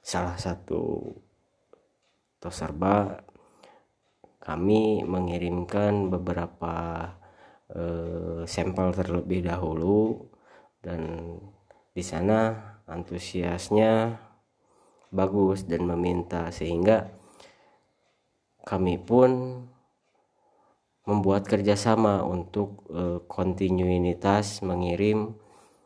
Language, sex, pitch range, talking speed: Indonesian, male, 90-100 Hz, 60 wpm